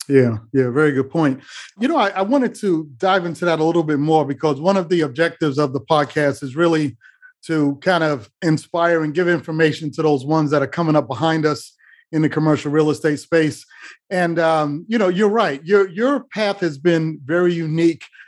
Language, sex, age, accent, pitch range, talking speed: English, male, 30-49, American, 150-180 Hz, 205 wpm